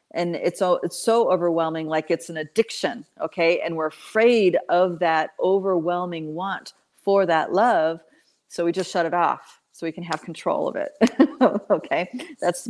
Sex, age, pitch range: female, 40-59, 165-195 Hz